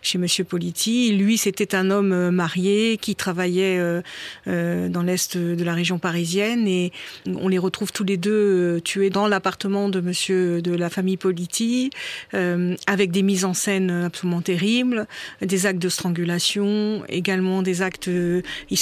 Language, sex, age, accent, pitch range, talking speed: French, female, 50-69, French, 175-195 Hz, 150 wpm